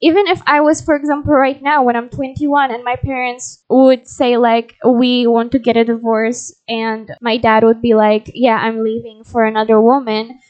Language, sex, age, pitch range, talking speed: English, female, 10-29, 230-275 Hz, 200 wpm